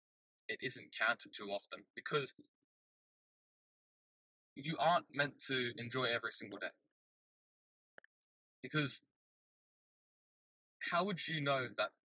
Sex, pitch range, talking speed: male, 120-155 Hz, 100 wpm